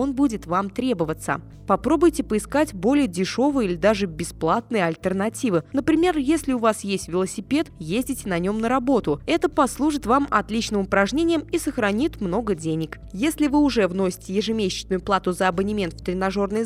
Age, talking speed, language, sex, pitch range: 20-39, 150 wpm, Russian, female, 190-275 Hz